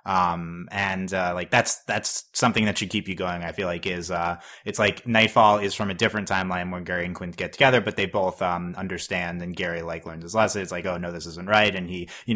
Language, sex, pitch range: English, male, 90-120 Hz